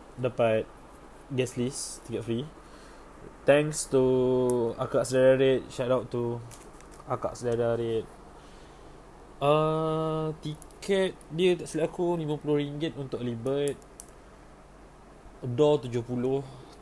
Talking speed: 95 wpm